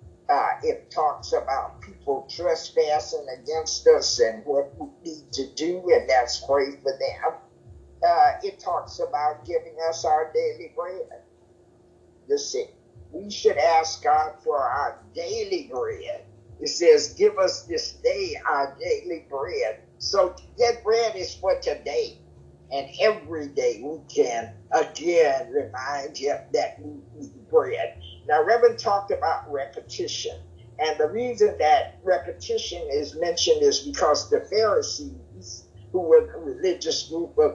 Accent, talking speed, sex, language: American, 140 wpm, male, English